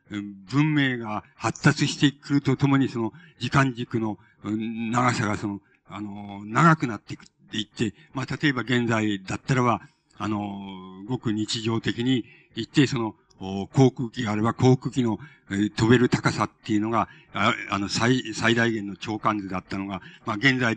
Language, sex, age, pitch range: Japanese, male, 50-69, 105-140 Hz